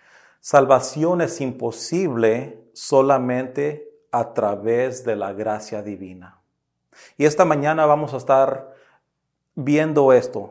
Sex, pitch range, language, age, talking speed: male, 120-150 Hz, English, 40-59, 105 wpm